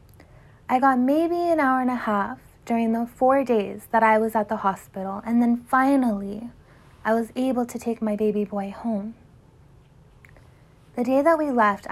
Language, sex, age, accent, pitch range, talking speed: English, female, 20-39, American, 210-255 Hz, 175 wpm